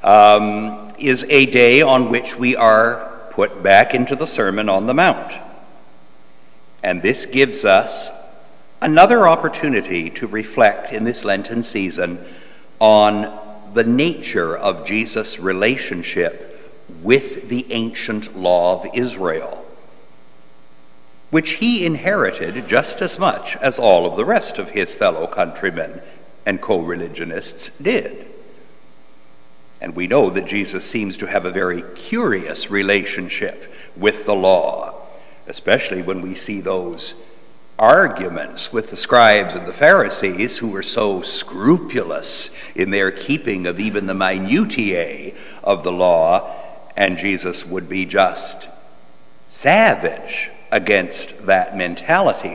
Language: English